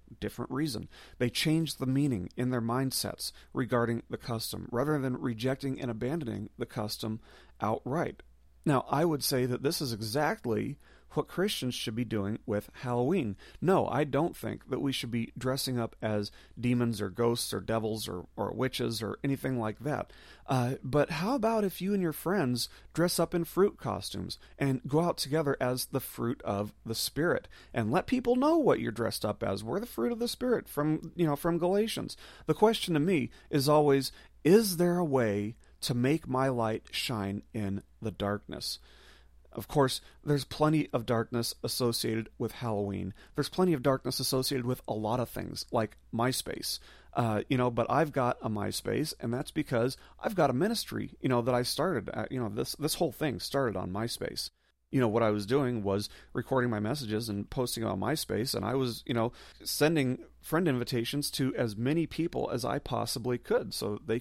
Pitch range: 115-145 Hz